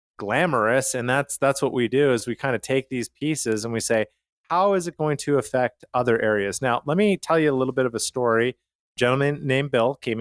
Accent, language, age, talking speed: American, English, 30-49, 240 wpm